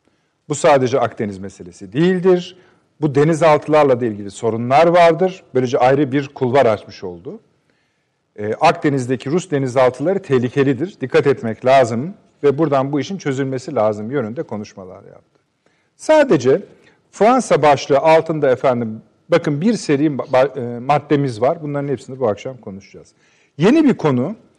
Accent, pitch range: native, 135-215 Hz